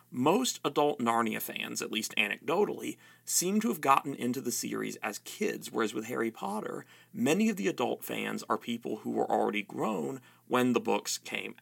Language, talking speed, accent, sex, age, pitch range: English, 180 wpm, American, male, 40-59, 115-195 Hz